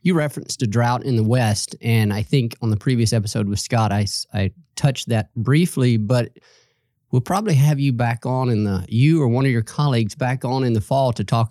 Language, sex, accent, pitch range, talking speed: English, male, American, 110-130 Hz, 225 wpm